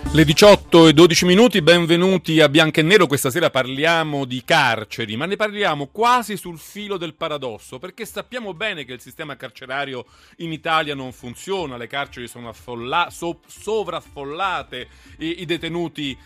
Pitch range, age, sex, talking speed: 135-195 Hz, 40-59, male, 150 wpm